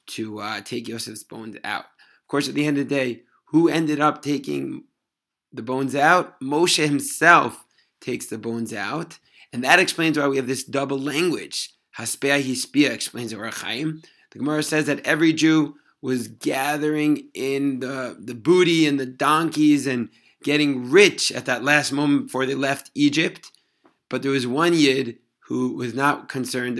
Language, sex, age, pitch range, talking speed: English, male, 30-49, 120-145 Hz, 170 wpm